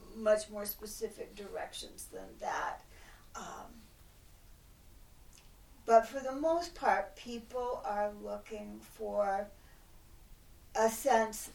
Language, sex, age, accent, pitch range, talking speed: English, female, 50-69, American, 180-225 Hz, 95 wpm